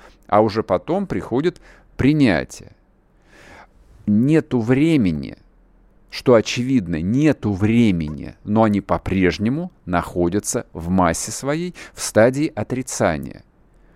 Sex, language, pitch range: male, Russian, 100-145 Hz